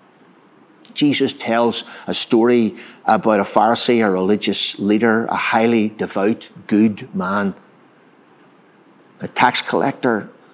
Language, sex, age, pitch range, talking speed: English, male, 60-79, 100-125 Hz, 105 wpm